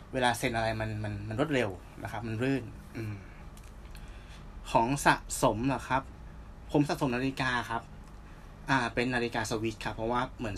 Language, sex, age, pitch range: Thai, male, 20-39, 105-140 Hz